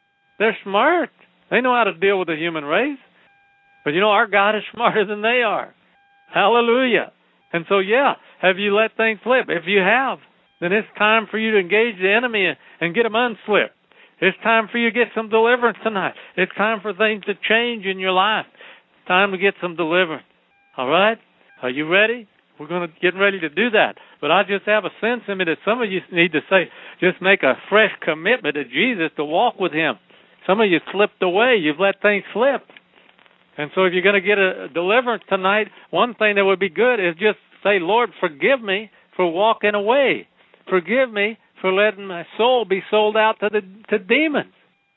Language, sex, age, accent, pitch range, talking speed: English, male, 60-79, American, 185-225 Hz, 210 wpm